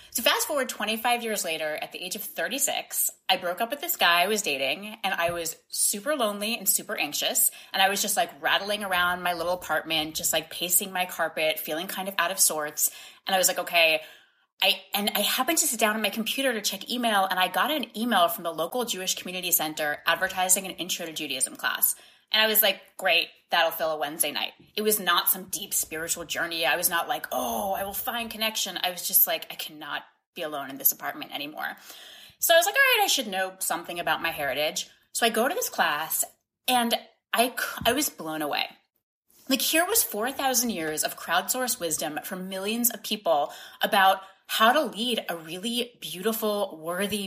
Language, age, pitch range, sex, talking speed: English, 20-39, 175-235 Hz, female, 210 wpm